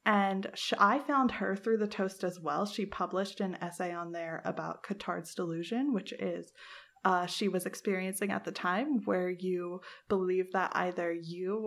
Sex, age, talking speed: female, 20-39, 170 wpm